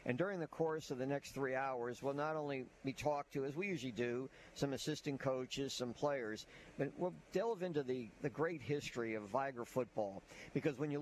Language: English